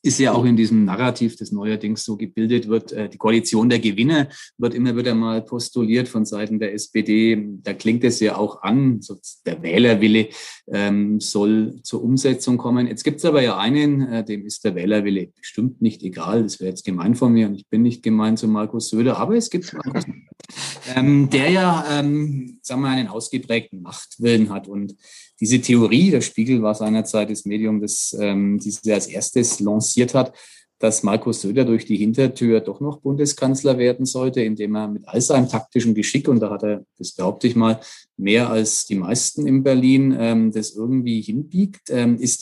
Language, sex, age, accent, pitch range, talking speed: German, male, 30-49, German, 105-125 Hz, 180 wpm